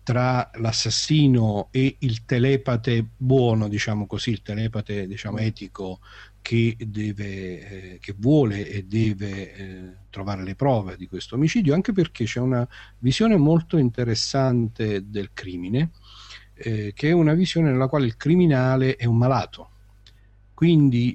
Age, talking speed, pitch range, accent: 50-69, 130 wpm, 105-125 Hz, native